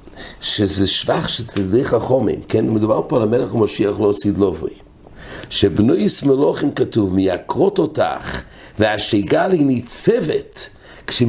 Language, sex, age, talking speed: English, male, 60-79, 110 wpm